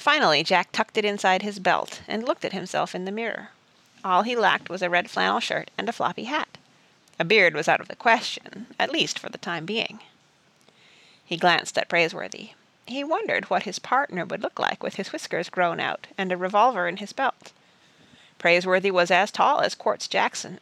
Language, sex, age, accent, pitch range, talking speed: English, female, 40-59, American, 185-240 Hz, 200 wpm